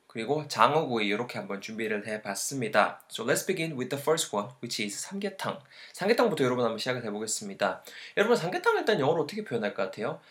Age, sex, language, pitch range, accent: 20-39, male, Korean, 120-170 Hz, native